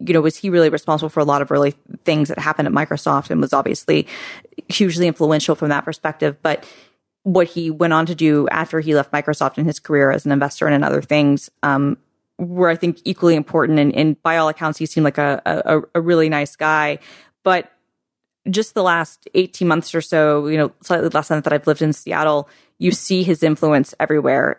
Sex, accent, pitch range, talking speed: female, American, 145-165 Hz, 215 wpm